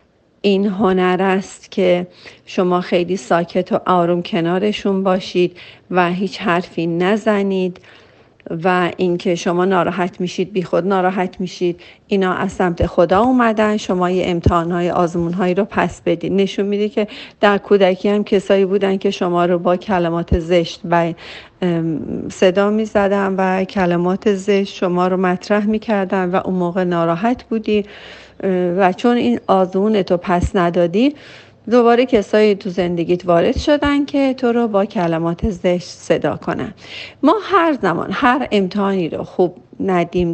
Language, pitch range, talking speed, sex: Persian, 175-210 Hz, 140 wpm, female